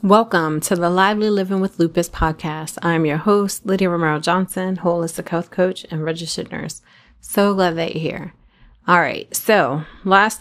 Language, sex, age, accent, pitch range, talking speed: English, female, 30-49, American, 150-190 Hz, 160 wpm